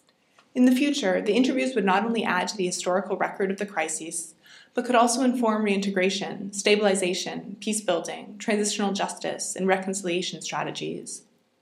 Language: English